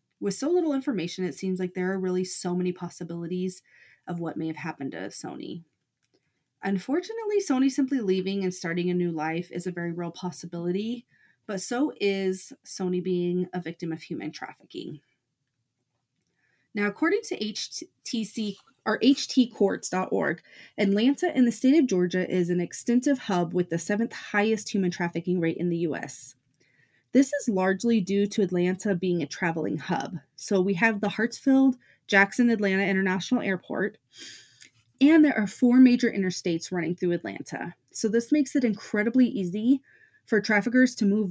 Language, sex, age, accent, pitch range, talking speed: English, female, 30-49, American, 175-230 Hz, 155 wpm